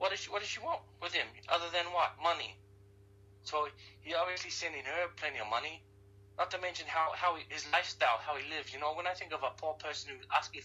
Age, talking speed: 30-49, 235 wpm